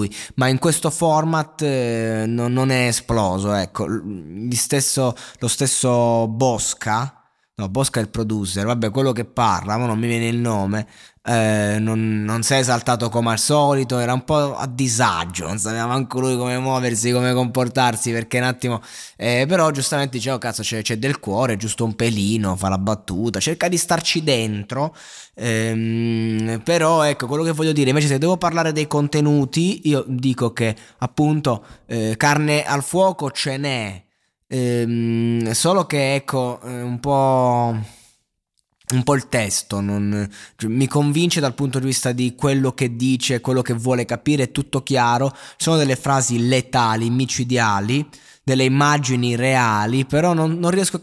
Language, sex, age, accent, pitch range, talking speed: Italian, male, 20-39, native, 115-145 Hz, 160 wpm